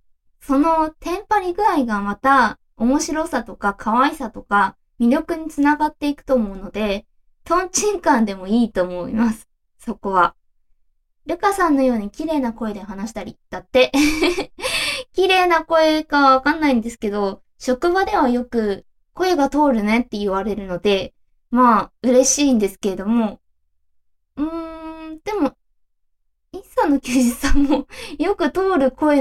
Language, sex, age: Japanese, female, 20-39